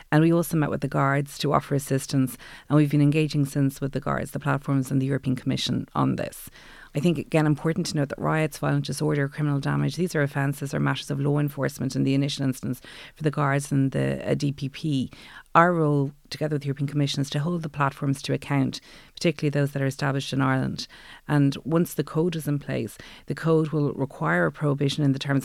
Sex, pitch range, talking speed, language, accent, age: female, 135-150 Hz, 220 wpm, English, Irish, 40-59